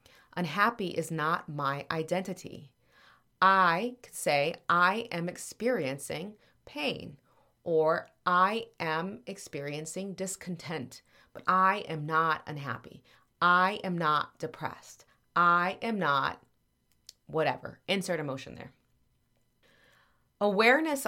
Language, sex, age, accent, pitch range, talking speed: English, female, 30-49, American, 155-195 Hz, 95 wpm